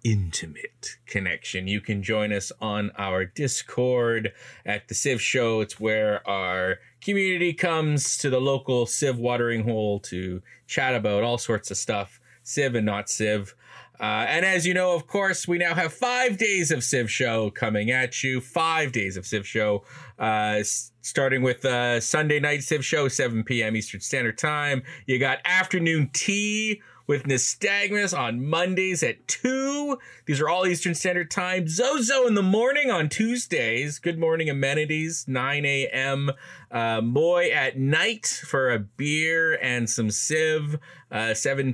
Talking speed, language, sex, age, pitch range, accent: 155 wpm, English, male, 30-49, 115-165 Hz, American